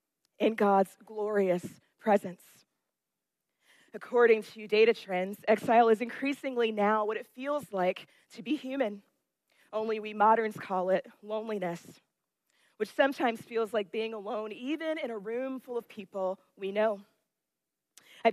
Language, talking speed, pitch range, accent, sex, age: English, 135 wpm, 195-225 Hz, American, female, 20-39